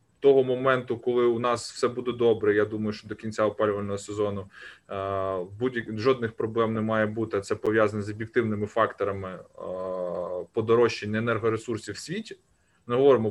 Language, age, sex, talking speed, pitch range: Ukrainian, 20-39, male, 155 wpm, 105-135 Hz